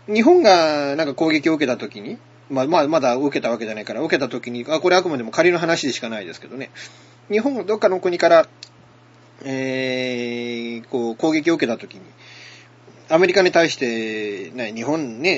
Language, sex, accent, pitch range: Japanese, male, native, 120-190 Hz